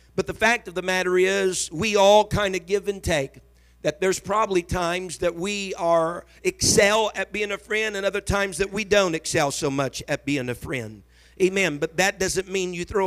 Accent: American